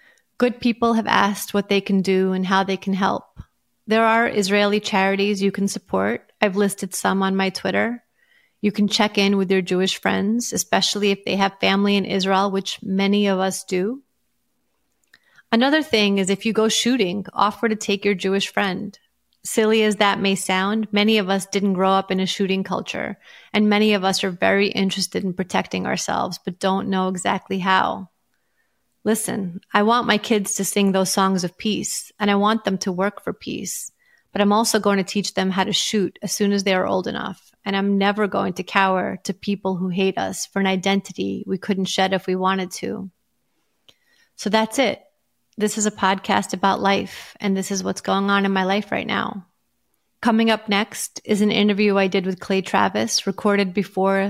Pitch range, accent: 190-210 Hz, American